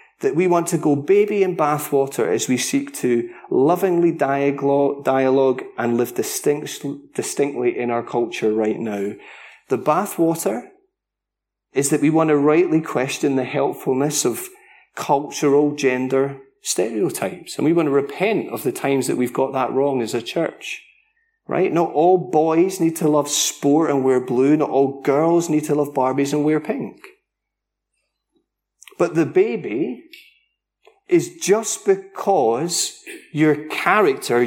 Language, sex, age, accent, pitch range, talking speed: English, male, 30-49, British, 140-195 Hz, 145 wpm